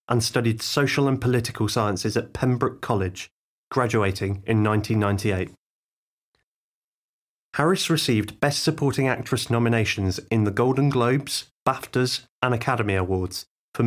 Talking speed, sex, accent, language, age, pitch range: 120 wpm, male, British, English, 30-49, 105-125 Hz